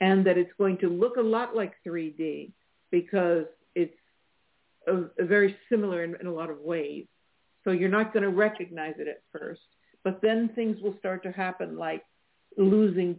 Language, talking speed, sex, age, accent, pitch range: English, 175 wpm, female, 60-79, American, 175-215 Hz